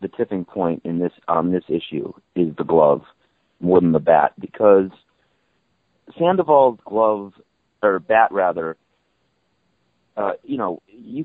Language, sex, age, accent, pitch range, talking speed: English, male, 40-59, American, 85-115 Hz, 140 wpm